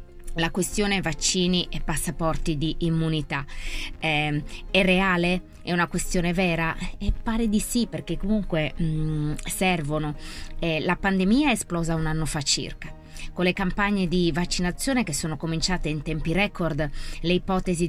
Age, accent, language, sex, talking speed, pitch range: 20-39, native, Italian, female, 150 wpm, 155-190 Hz